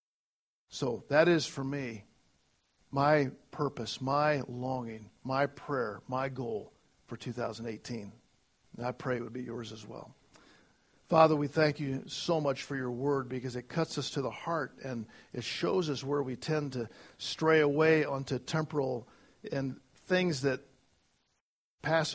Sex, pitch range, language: male, 125-150 Hz, English